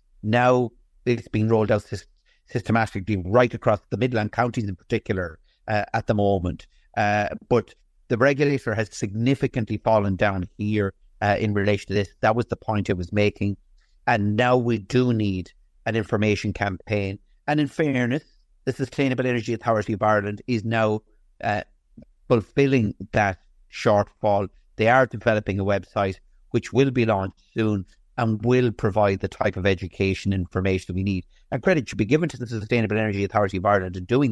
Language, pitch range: English, 100-125 Hz